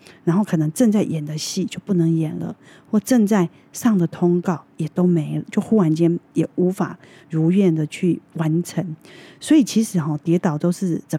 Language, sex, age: Chinese, female, 30-49